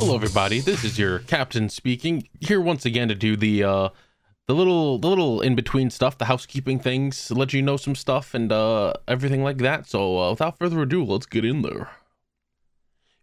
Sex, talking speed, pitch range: male, 200 wpm, 120-150 Hz